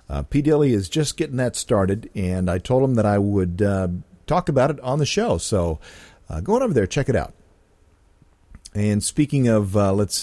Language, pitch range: English, 95-145 Hz